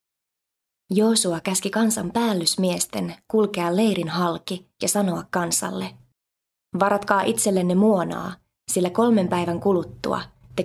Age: 20-39